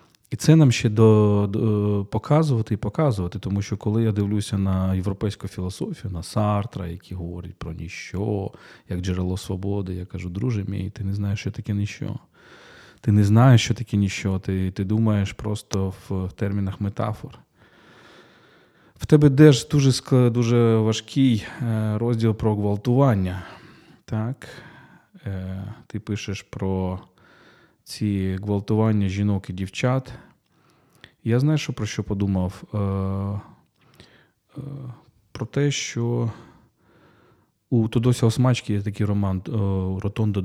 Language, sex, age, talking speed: Ukrainian, male, 20-39, 120 wpm